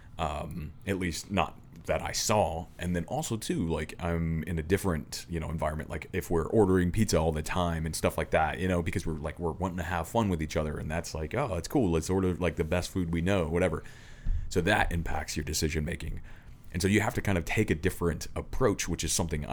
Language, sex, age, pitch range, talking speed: English, male, 30-49, 80-100 Hz, 245 wpm